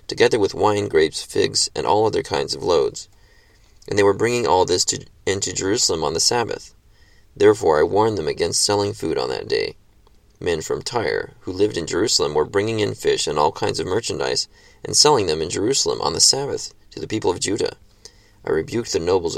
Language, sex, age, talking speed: English, male, 30-49, 200 wpm